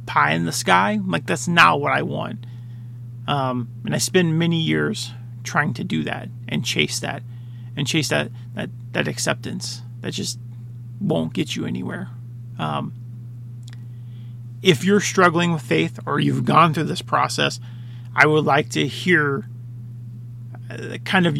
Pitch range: 120-145 Hz